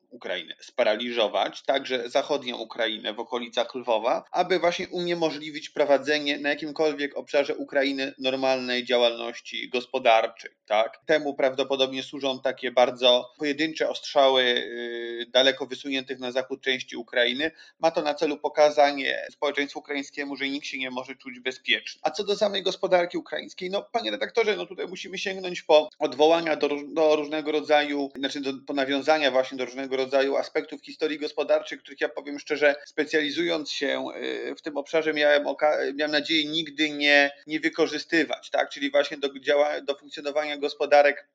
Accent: native